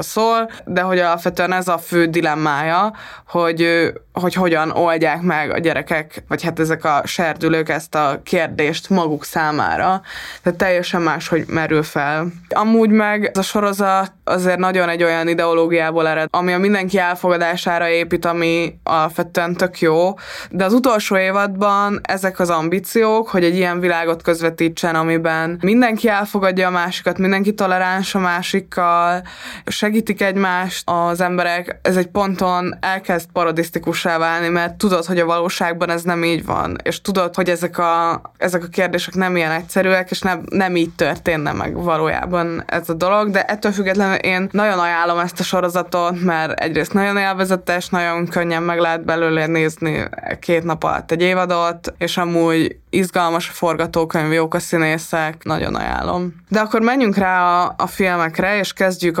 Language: Hungarian